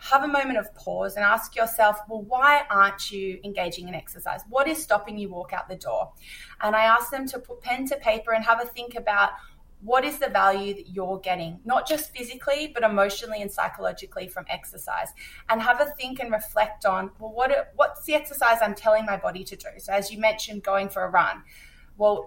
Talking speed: 215 wpm